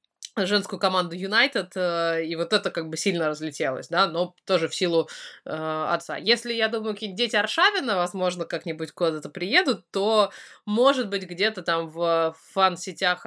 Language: Russian